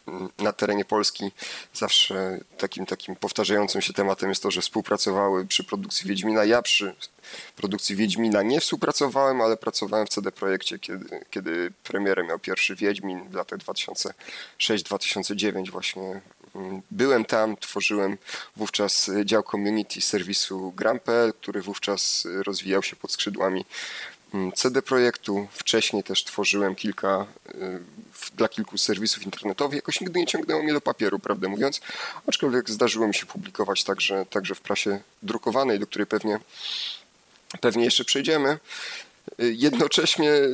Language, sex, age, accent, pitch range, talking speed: Polish, male, 30-49, native, 100-110 Hz, 130 wpm